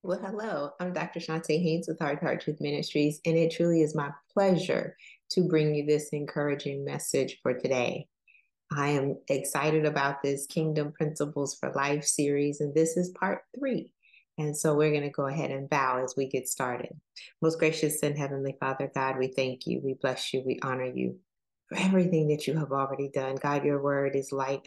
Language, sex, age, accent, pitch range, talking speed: English, female, 30-49, American, 135-155 Hz, 195 wpm